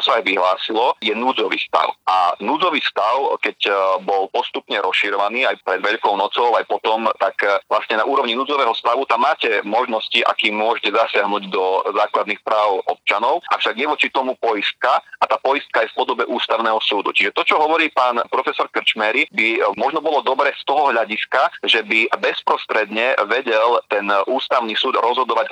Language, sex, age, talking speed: Slovak, male, 30-49, 165 wpm